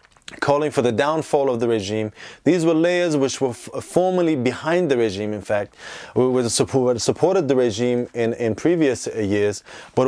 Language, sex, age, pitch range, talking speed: English, male, 20-39, 115-150 Hz, 175 wpm